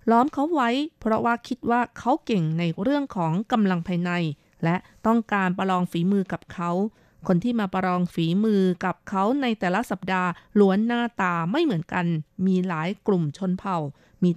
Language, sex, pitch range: Thai, female, 175-220 Hz